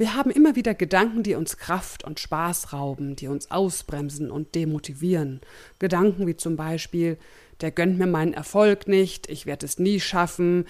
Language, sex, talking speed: German, female, 175 wpm